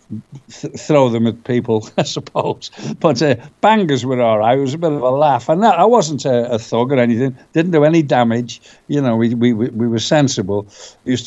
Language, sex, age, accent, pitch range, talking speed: English, male, 60-79, British, 120-175 Hz, 220 wpm